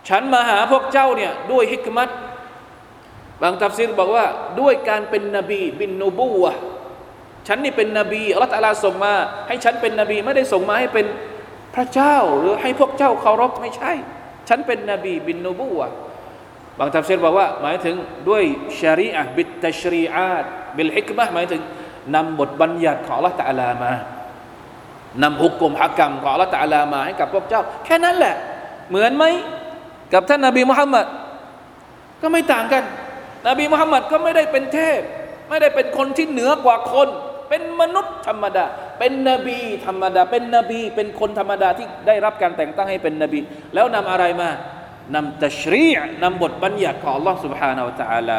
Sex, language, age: male, Thai, 20-39